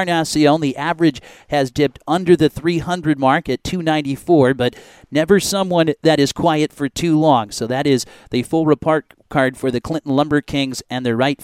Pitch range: 130-155 Hz